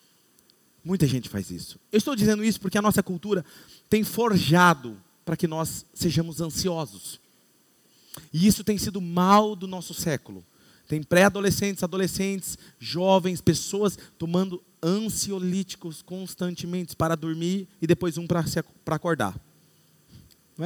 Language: Portuguese